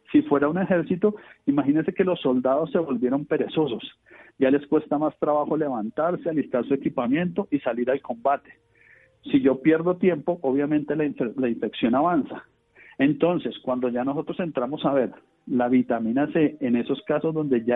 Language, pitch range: Spanish, 130-170 Hz